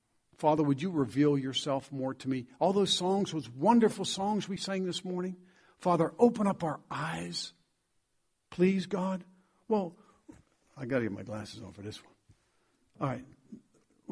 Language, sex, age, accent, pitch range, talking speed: English, male, 50-69, American, 135-195 Hz, 155 wpm